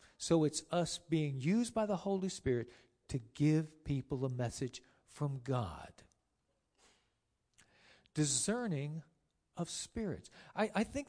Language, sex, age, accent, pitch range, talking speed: English, male, 50-69, American, 135-190 Hz, 120 wpm